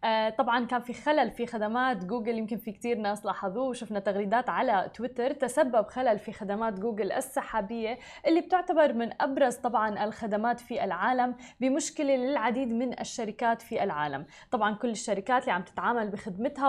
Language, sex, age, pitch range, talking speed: Arabic, female, 20-39, 215-265 Hz, 160 wpm